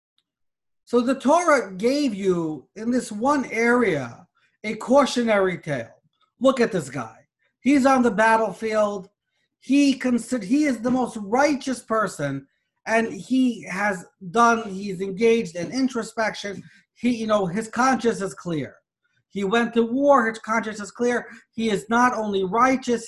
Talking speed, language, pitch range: 145 wpm, English, 190-255 Hz